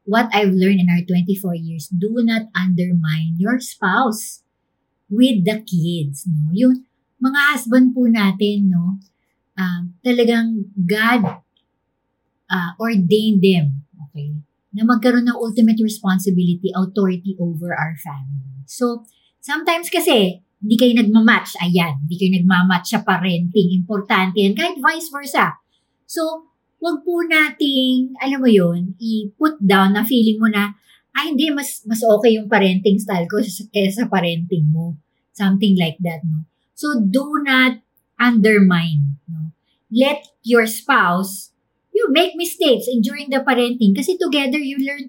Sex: male